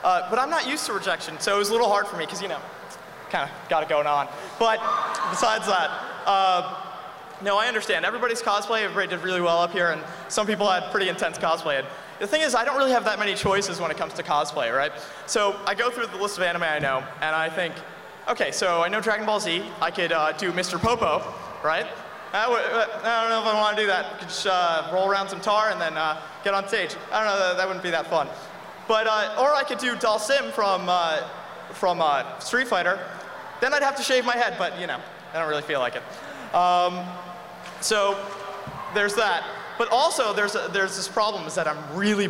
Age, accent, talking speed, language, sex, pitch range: 20-39, American, 240 wpm, English, male, 175-220 Hz